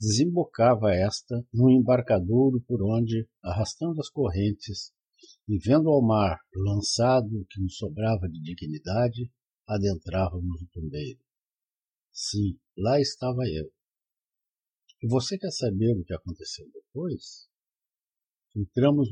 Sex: male